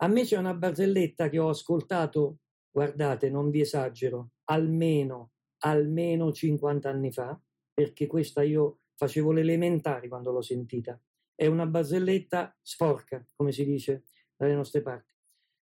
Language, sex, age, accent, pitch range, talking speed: Italian, male, 50-69, native, 150-200 Hz, 135 wpm